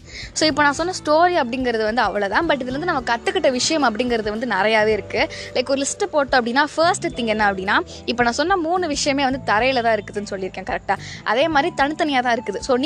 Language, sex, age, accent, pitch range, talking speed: Tamil, female, 20-39, native, 225-295 Hz, 180 wpm